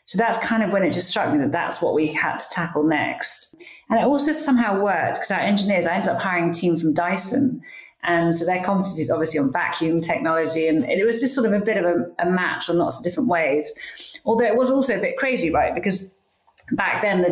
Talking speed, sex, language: 245 wpm, female, English